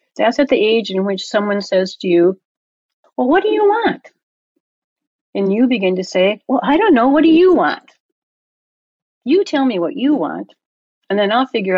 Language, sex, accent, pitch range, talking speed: English, female, American, 185-260 Hz, 195 wpm